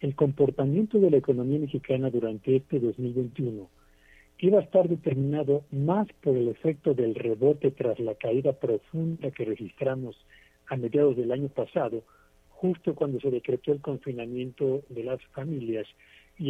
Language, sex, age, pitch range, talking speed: Spanish, male, 60-79, 130-175 Hz, 145 wpm